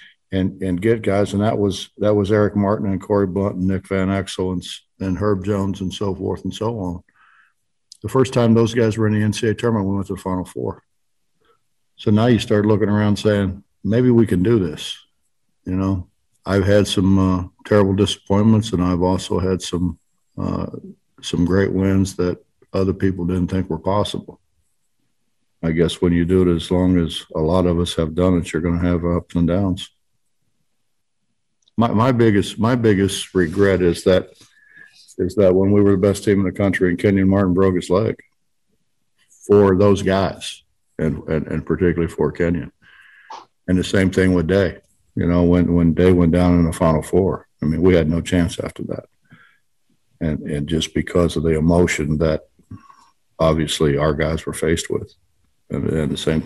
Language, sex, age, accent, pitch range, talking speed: English, male, 60-79, American, 85-100 Hz, 190 wpm